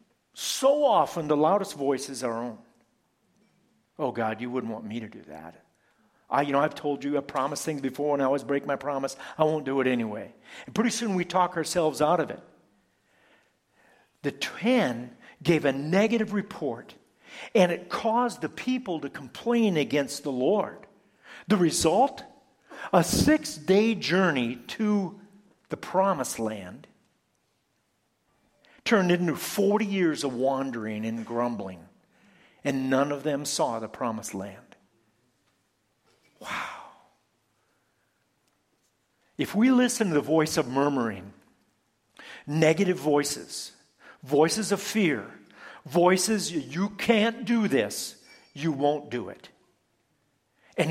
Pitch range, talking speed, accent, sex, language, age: 135-200 Hz, 130 wpm, American, male, English, 50-69